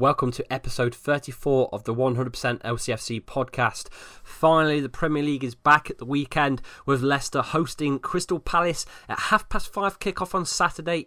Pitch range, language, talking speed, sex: 125-160 Hz, English, 165 wpm, male